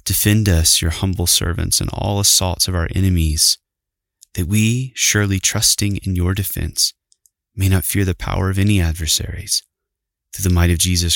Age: 20-39